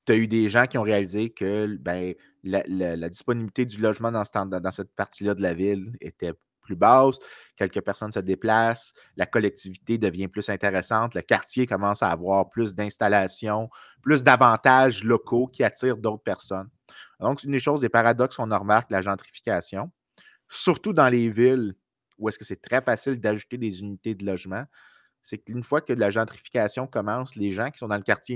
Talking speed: 195 wpm